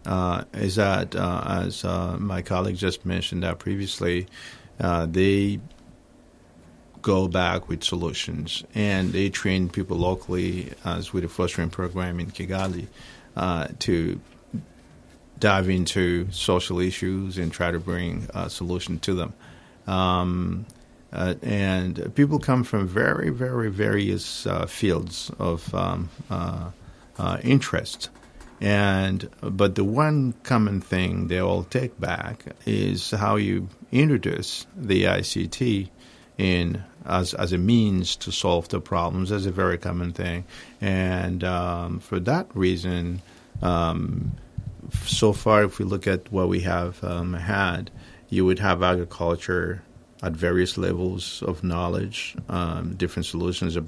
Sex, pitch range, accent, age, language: male, 85-100 Hz, American, 50-69, Japanese